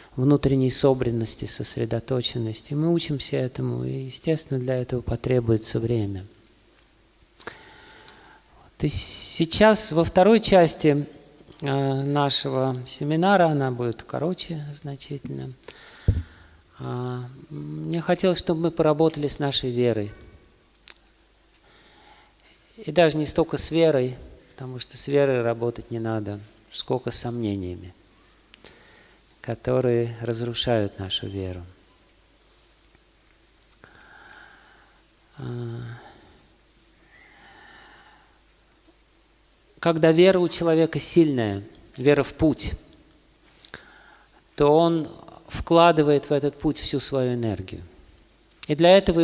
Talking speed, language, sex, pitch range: 90 wpm, Russian, male, 115-160 Hz